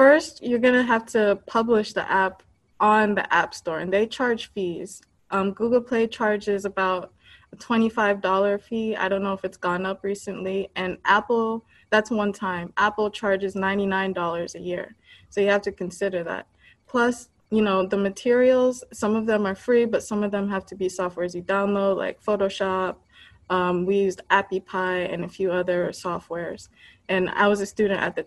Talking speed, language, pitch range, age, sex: 185 wpm, English, 185-210 Hz, 20-39, female